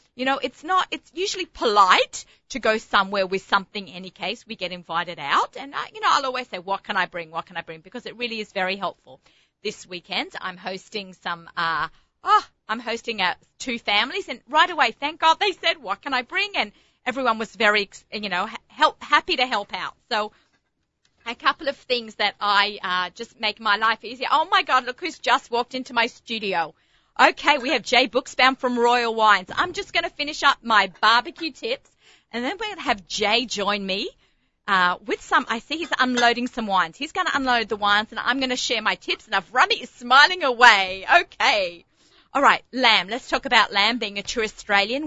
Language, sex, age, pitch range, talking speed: English, female, 30-49, 200-265 Hz, 215 wpm